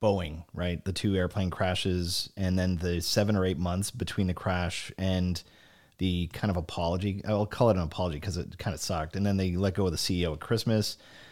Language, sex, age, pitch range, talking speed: English, male, 30-49, 90-115 Hz, 220 wpm